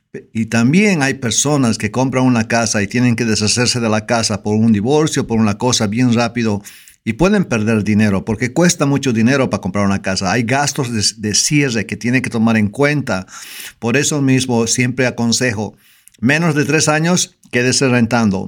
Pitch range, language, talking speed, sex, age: 110-130 Hz, English, 185 wpm, male, 50-69